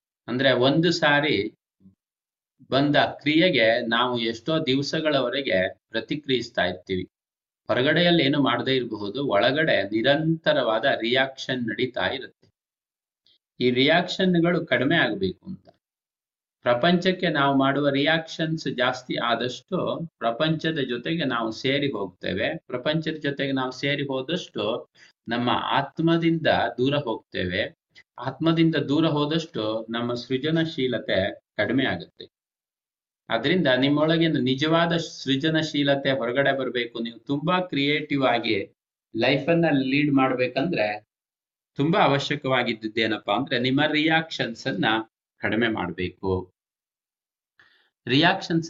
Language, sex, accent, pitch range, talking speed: Kannada, male, native, 120-155 Hz, 90 wpm